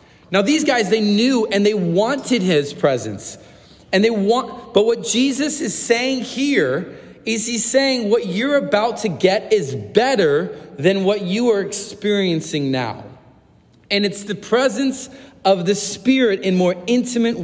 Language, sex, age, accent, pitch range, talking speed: English, male, 30-49, American, 145-215 Hz, 155 wpm